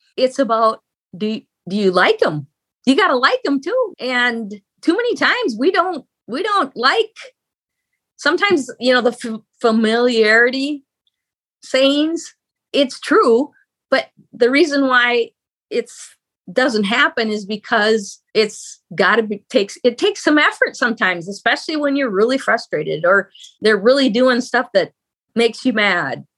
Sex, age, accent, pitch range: female, 30-49, American, 230-305 Hz